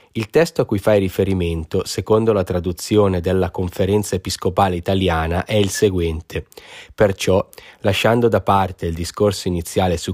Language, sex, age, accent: Italian, male, 20-39, native